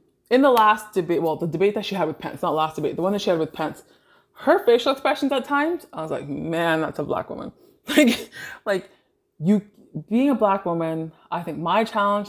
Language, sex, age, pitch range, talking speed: English, female, 20-39, 155-205 Hz, 225 wpm